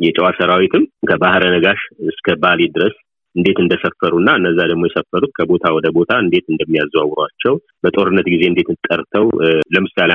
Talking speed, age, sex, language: 125 wpm, 30-49, male, Amharic